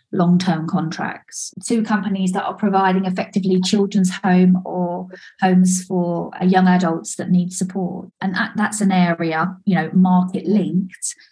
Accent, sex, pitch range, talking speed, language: British, female, 175-200 Hz, 140 wpm, English